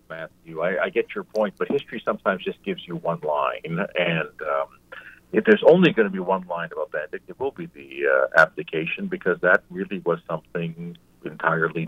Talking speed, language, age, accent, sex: 190 wpm, English, 60-79, American, male